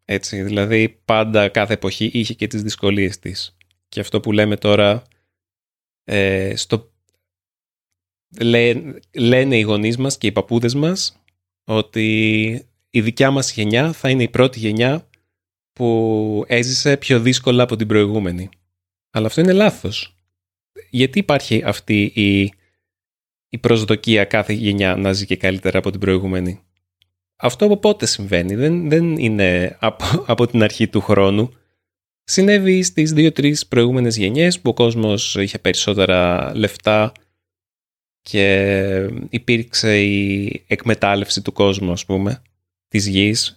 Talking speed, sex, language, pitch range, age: 130 wpm, male, Greek, 95-120 Hz, 30-49